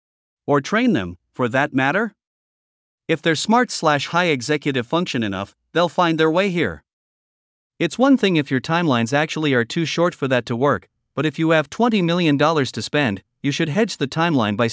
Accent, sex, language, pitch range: American, male, English, 135-175 Hz